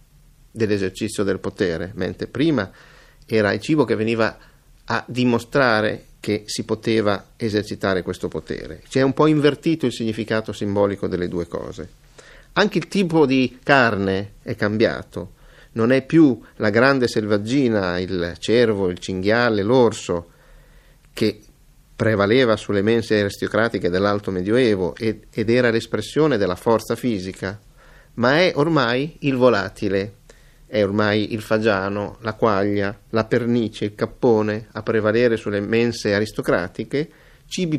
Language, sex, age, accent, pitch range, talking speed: Italian, male, 50-69, native, 105-125 Hz, 125 wpm